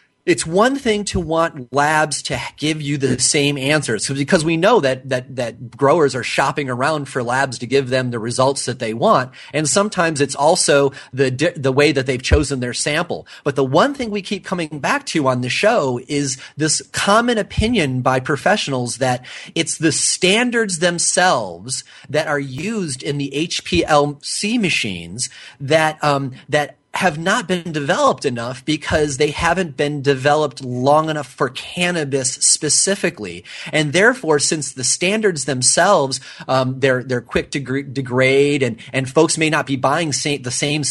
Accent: American